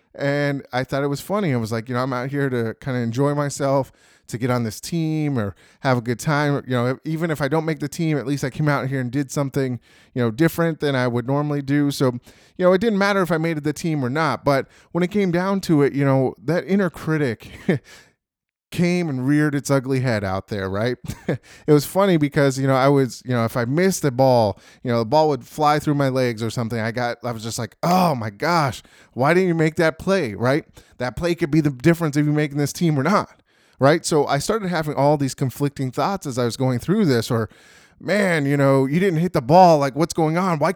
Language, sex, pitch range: English, male, 125-160 Hz